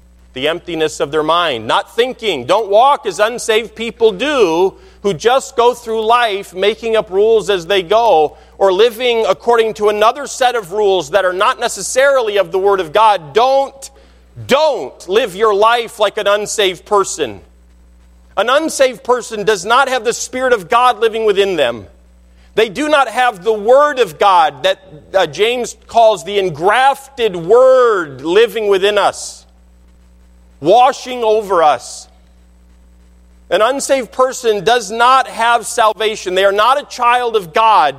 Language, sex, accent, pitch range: English, male, American, 155-240 Hz